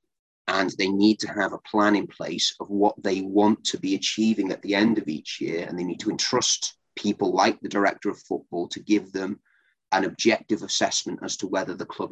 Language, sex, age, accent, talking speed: English, male, 30-49, British, 220 wpm